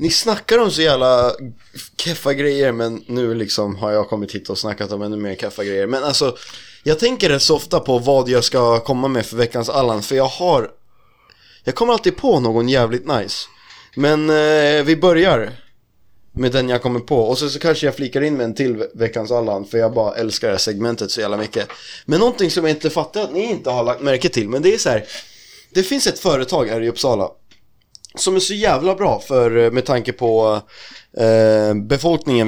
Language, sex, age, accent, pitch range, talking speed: Swedish, male, 20-39, native, 115-155 Hz, 205 wpm